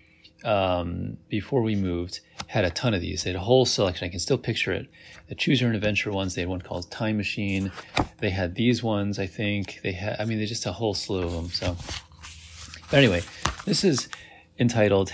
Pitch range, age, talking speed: 90-115 Hz, 30-49, 215 wpm